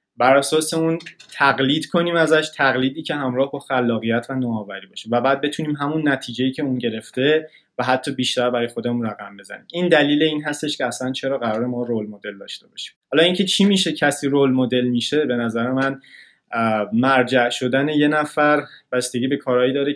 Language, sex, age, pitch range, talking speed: Persian, male, 20-39, 120-150 Hz, 185 wpm